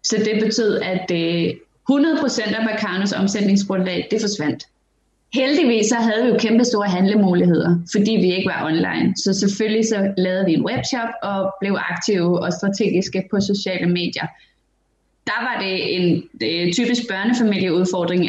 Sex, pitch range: female, 180-215 Hz